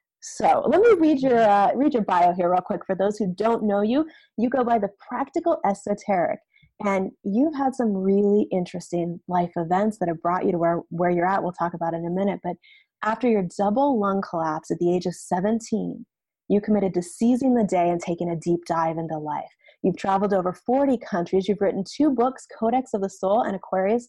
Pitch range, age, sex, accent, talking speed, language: 180-230 Hz, 30-49, female, American, 215 wpm, English